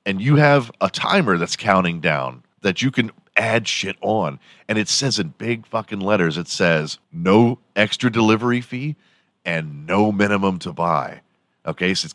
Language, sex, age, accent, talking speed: English, male, 40-59, American, 175 wpm